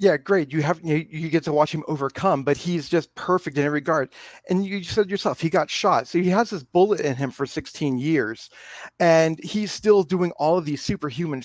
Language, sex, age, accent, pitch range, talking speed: English, male, 40-59, American, 130-165 Hz, 230 wpm